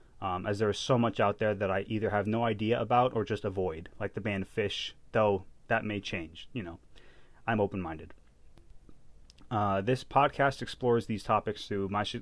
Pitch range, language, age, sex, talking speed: 95-115 Hz, English, 20-39, male, 180 wpm